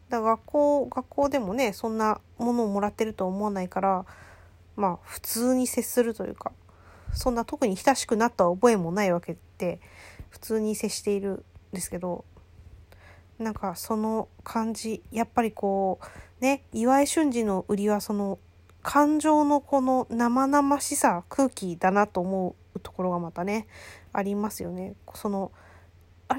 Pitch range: 175-245 Hz